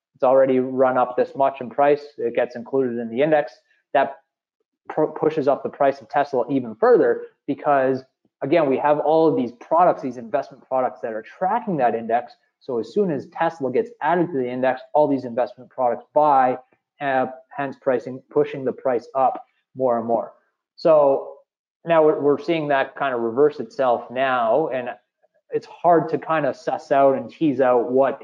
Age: 20-39